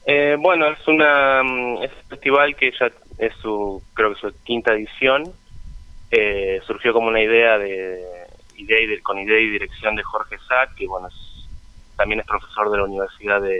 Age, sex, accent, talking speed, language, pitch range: 20-39, male, Argentinian, 185 wpm, Spanish, 95-120 Hz